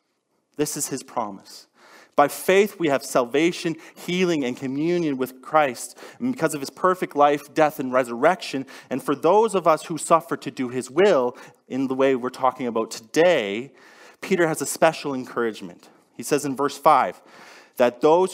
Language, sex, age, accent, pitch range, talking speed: English, male, 30-49, American, 125-160 Hz, 170 wpm